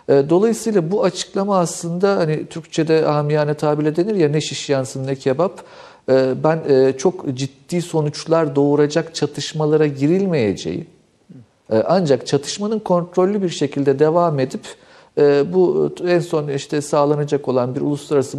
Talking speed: 120 wpm